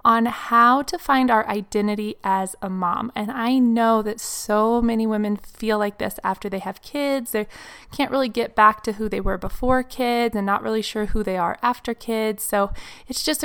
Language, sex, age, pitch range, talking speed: English, female, 20-39, 210-255 Hz, 205 wpm